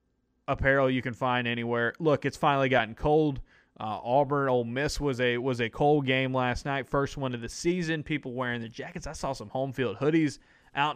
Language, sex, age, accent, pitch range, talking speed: English, male, 20-39, American, 115-135 Hz, 210 wpm